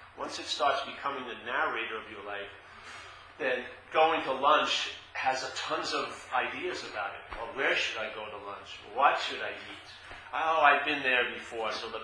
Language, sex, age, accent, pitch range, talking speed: English, male, 40-59, American, 110-140 Hz, 185 wpm